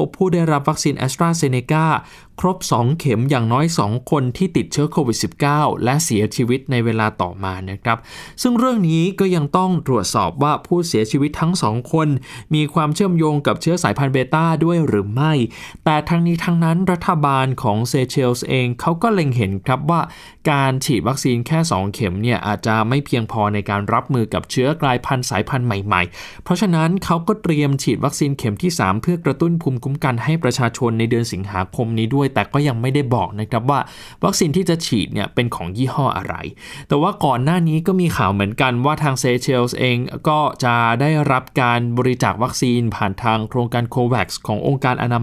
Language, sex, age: Thai, male, 20-39